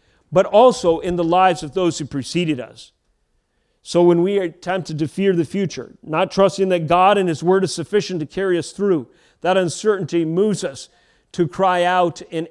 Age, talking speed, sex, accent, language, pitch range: 40-59, 190 wpm, male, American, English, 155-190 Hz